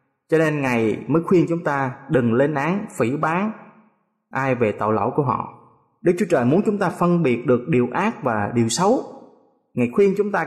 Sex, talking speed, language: male, 205 wpm, Vietnamese